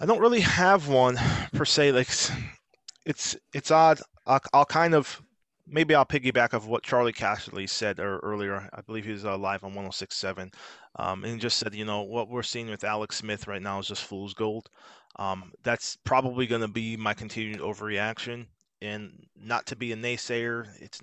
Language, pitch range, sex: English, 105-125 Hz, male